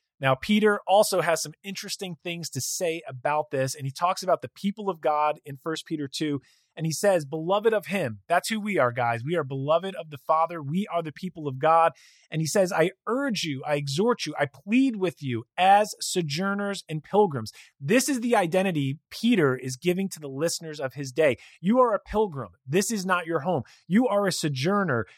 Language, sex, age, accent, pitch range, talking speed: English, male, 30-49, American, 145-200 Hz, 210 wpm